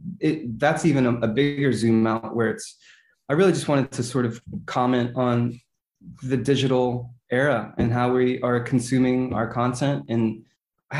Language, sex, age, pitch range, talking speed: English, male, 20-39, 115-135 Hz, 170 wpm